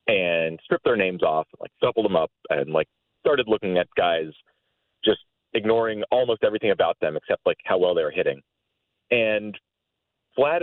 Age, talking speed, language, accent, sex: 30-49, 170 wpm, English, American, male